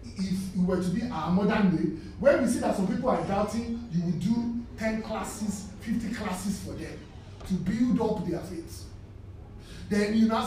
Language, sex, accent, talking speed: English, male, Nigerian, 190 wpm